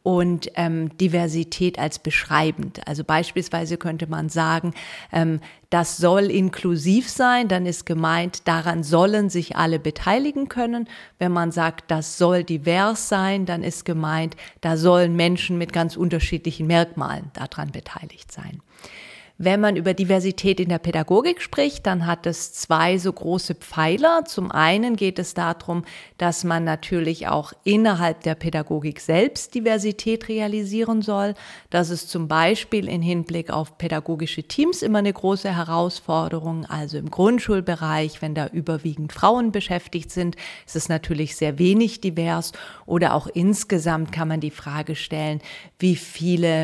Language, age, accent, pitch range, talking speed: German, 40-59, German, 160-190 Hz, 145 wpm